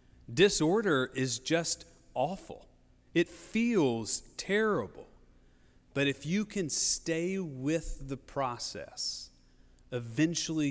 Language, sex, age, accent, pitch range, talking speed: English, male, 40-59, American, 110-155 Hz, 90 wpm